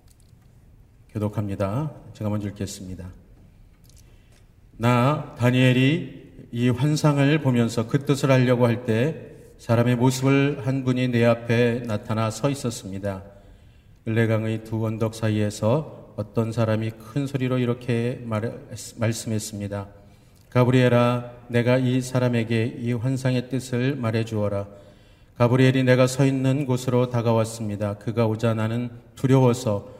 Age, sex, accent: 40-59, male, native